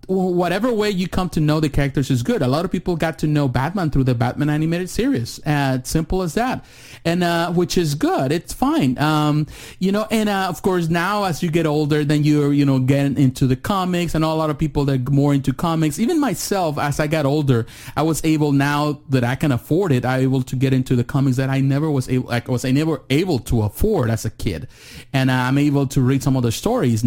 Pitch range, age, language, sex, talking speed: 130-170 Hz, 30-49, English, male, 240 wpm